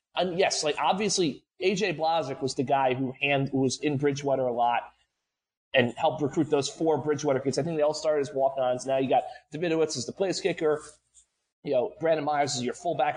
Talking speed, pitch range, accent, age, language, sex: 210 wpm, 140-190 Hz, American, 30-49, English, male